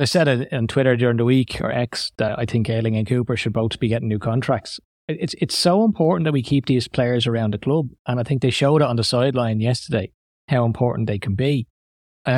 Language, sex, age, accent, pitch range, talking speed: English, male, 30-49, Irish, 115-150 Hz, 240 wpm